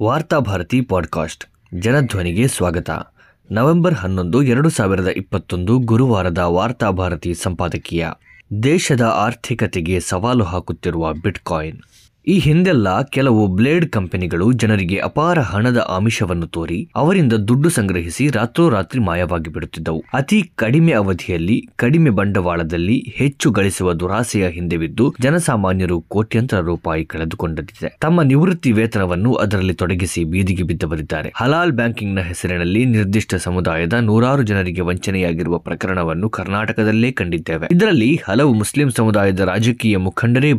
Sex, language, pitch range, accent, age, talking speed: male, Kannada, 90-125 Hz, native, 20-39, 105 wpm